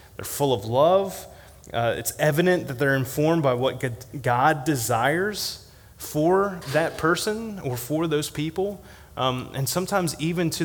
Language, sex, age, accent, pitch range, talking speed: English, male, 30-49, American, 115-150 Hz, 145 wpm